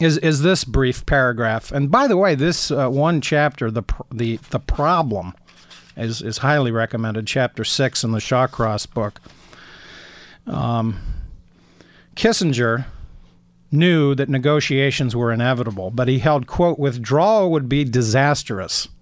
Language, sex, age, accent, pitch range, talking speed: English, male, 50-69, American, 115-155 Hz, 135 wpm